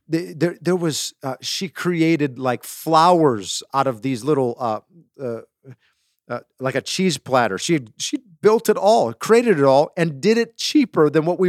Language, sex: English, male